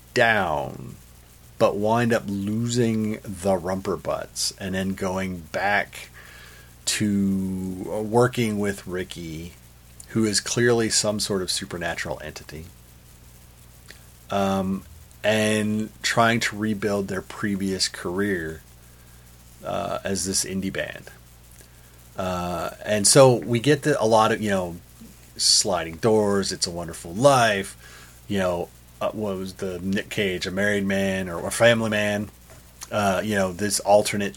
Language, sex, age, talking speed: English, male, 40-59, 125 wpm